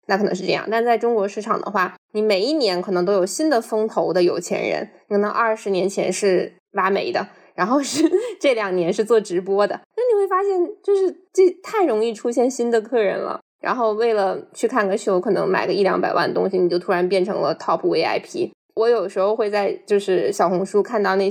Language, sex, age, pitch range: Chinese, female, 10-29, 200-305 Hz